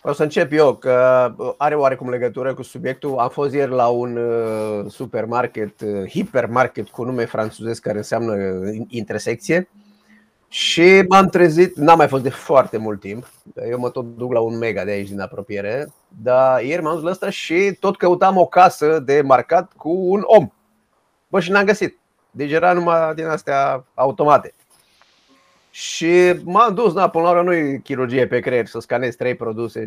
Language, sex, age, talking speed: Romanian, male, 30-49, 175 wpm